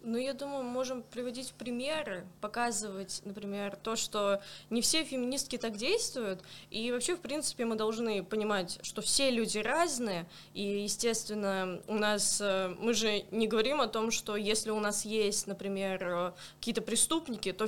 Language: Russian